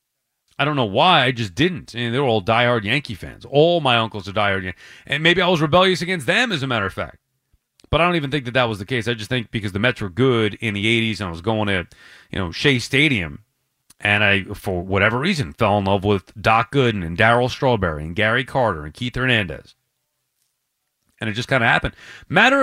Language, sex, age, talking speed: English, male, 30-49, 240 wpm